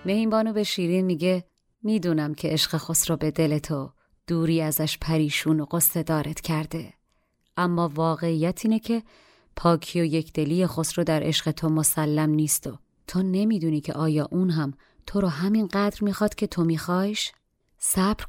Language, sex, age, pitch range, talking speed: Persian, female, 30-49, 160-200 Hz, 150 wpm